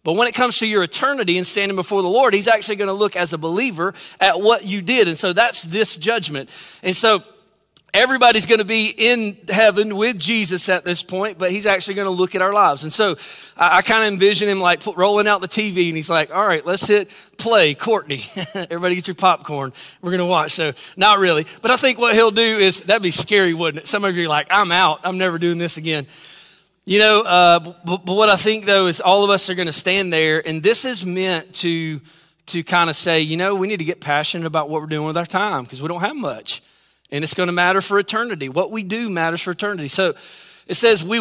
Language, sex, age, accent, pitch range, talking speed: English, male, 30-49, American, 165-210 Hz, 240 wpm